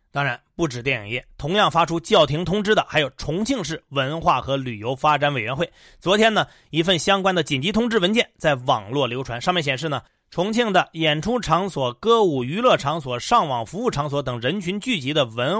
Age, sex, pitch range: 30-49, male, 130-180 Hz